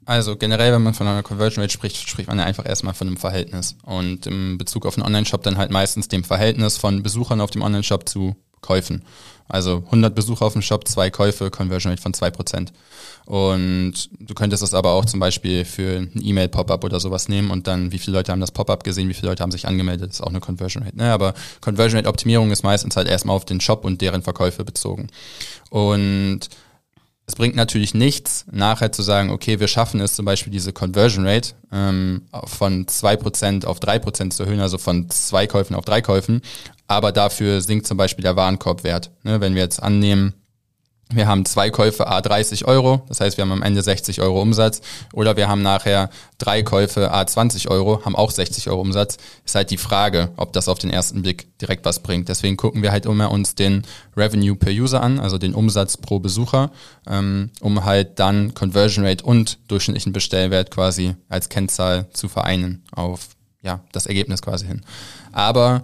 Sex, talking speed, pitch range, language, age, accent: male, 195 wpm, 95-110 Hz, German, 20-39, German